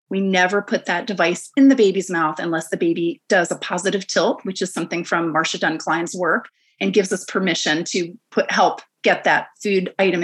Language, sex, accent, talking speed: English, female, American, 200 wpm